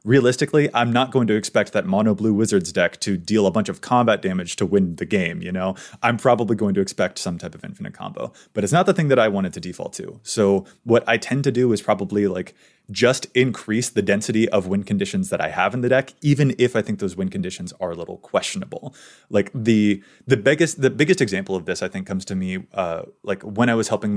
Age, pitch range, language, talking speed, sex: 20-39, 105-155 Hz, English, 245 wpm, male